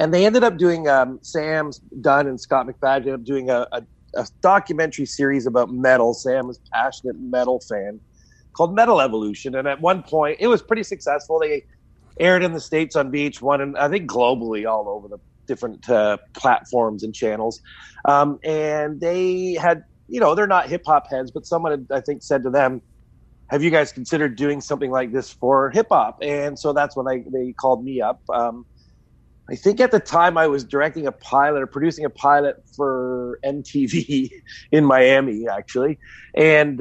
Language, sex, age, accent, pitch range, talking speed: English, male, 30-49, American, 125-160 Hz, 190 wpm